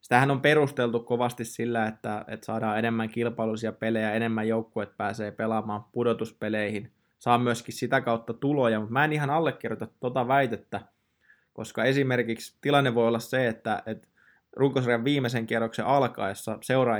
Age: 20-39